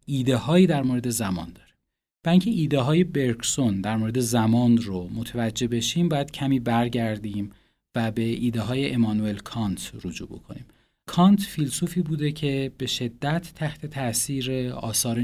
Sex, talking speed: male, 130 wpm